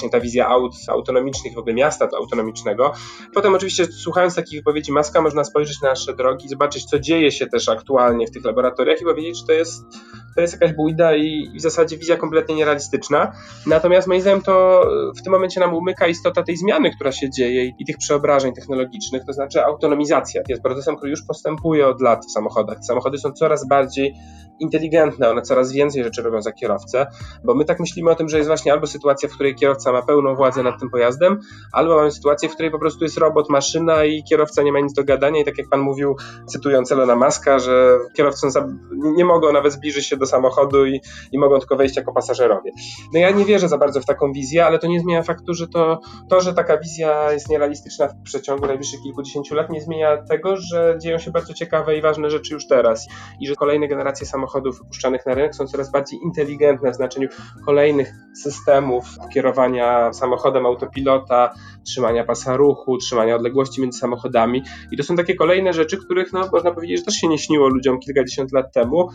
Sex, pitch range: male, 130-165 Hz